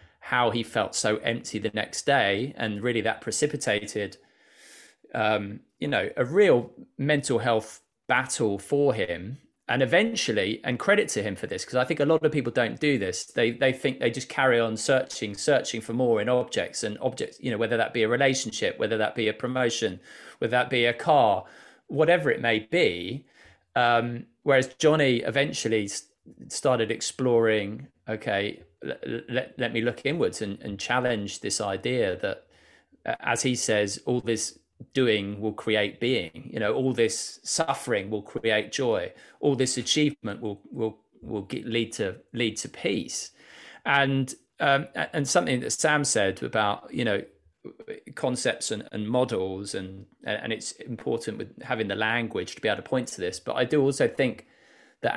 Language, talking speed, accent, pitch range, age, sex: English, 170 wpm, British, 110-130 Hz, 20-39, male